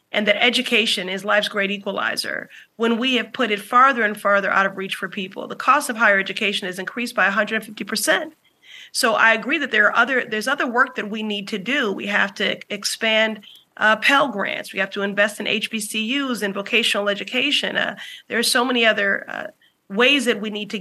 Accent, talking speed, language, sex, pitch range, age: American, 220 wpm, English, female, 210-245 Hz, 30-49